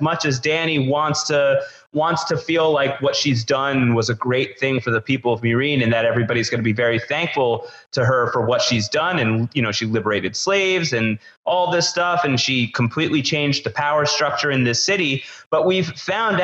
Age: 30-49